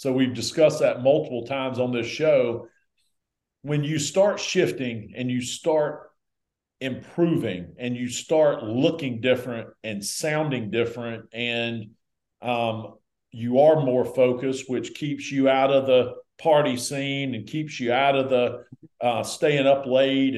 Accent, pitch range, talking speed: American, 120-150 Hz, 145 wpm